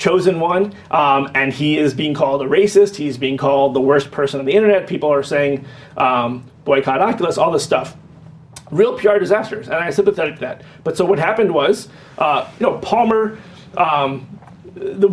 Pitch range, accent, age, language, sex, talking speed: 135-190 Hz, American, 30-49, English, male, 185 wpm